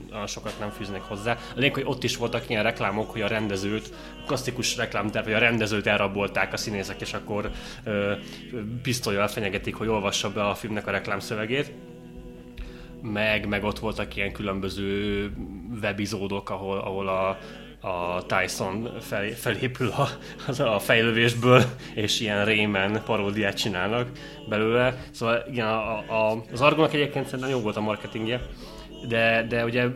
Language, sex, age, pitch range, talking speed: Hungarian, male, 20-39, 105-120 Hz, 140 wpm